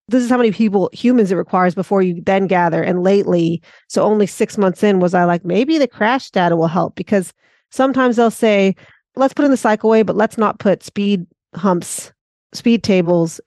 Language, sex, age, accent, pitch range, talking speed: English, female, 40-59, American, 175-205 Hz, 200 wpm